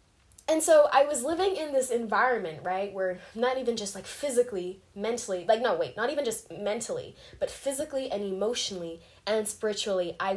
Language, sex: English, female